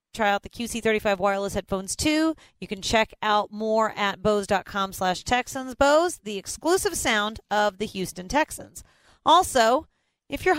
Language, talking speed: English, 145 wpm